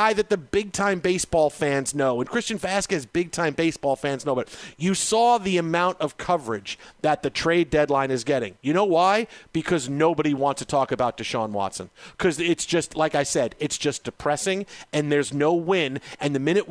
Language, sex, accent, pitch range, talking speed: English, male, American, 145-190 Hz, 200 wpm